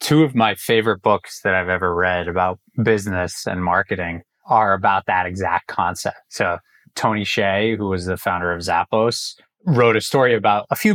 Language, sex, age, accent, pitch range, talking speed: English, male, 20-39, American, 90-115 Hz, 180 wpm